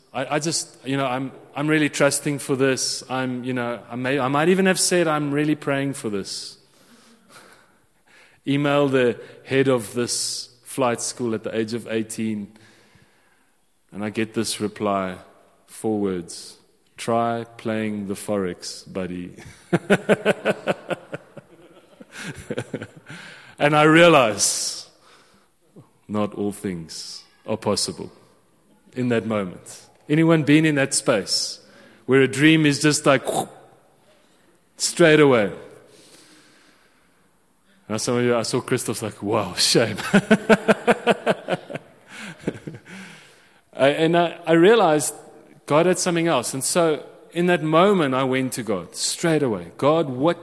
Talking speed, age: 125 wpm, 30-49